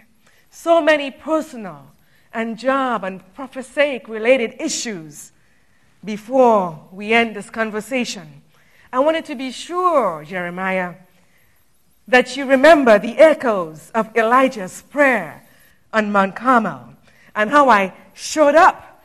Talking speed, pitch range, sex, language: 115 wpm, 195-270 Hz, female, English